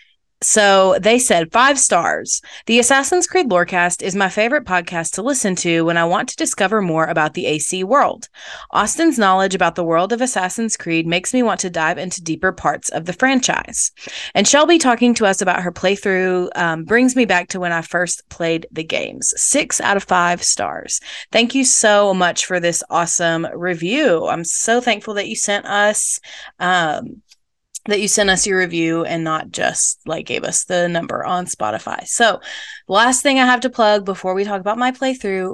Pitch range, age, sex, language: 175-225 Hz, 30-49, female, English